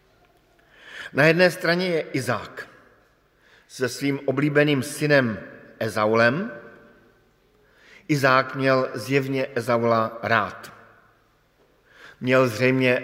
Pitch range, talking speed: 110-135 Hz, 80 wpm